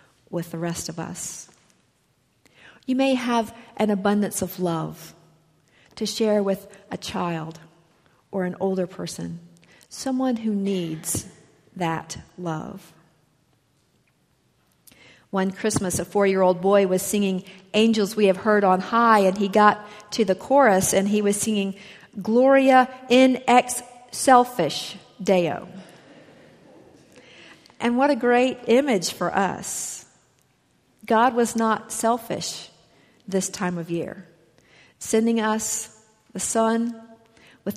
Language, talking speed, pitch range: English, 120 wpm, 170-220 Hz